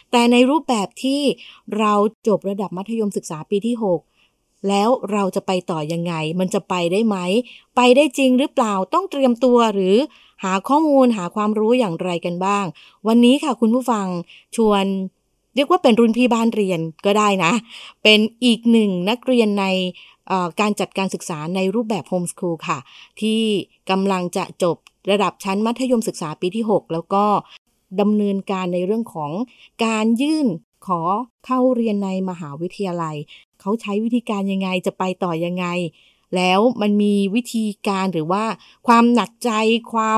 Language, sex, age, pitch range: Thai, female, 20-39, 185-230 Hz